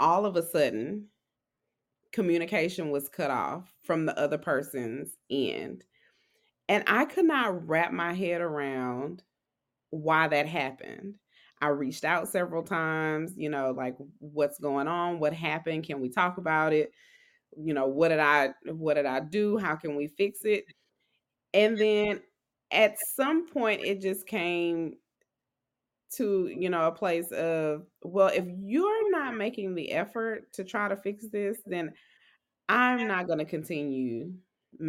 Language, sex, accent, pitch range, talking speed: English, female, American, 155-200 Hz, 150 wpm